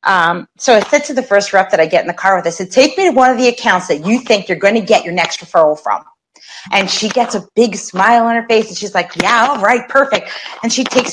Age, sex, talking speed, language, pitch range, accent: 30-49, female, 290 wpm, English, 190-260 Hz, American